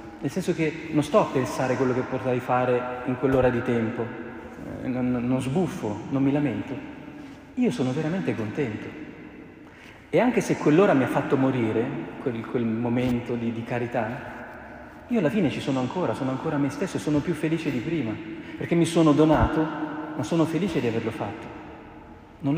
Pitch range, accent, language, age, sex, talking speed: 120-155 Hz, native, Italian, 40-59, male, 180 wpm